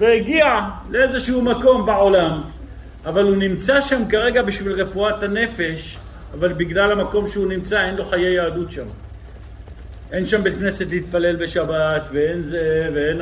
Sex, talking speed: male, 140 wpm